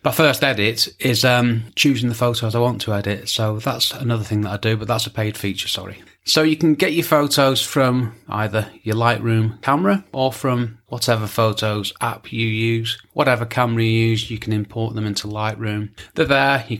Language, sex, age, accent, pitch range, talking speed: English, male, 30-49, British, 105-125 Hz, 200 wpm